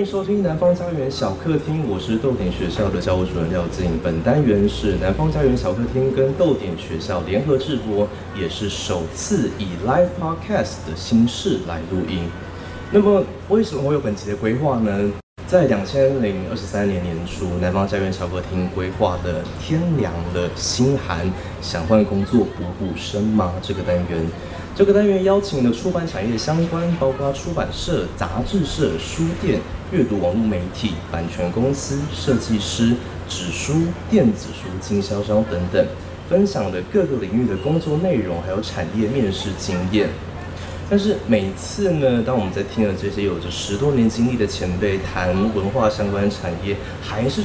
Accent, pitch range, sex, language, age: native, 90-130 Hz, male, Chinese, 20-39